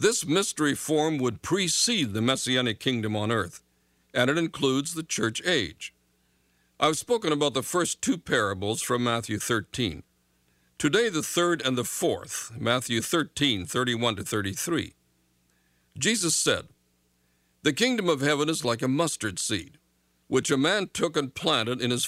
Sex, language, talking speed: male, English, 150 wpm